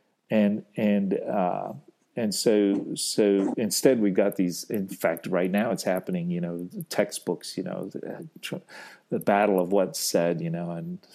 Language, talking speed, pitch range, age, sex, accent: English, 160 wpm, 100-150 Hz, 40-59, male, American